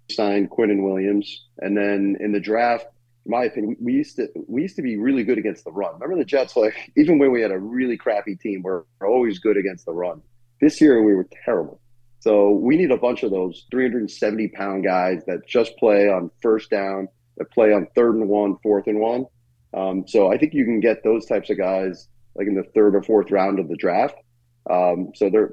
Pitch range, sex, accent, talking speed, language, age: 95-120 Hz, male, American, 235 wpm, English, 30-49